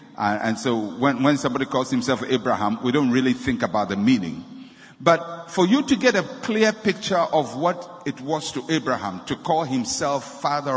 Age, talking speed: 50-69, 190 wpm